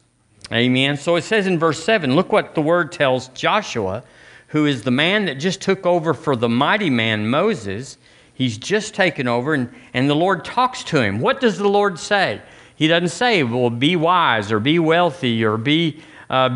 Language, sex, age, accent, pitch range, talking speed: English, male, 50-69, American, 125-175 Hz, 195 wpm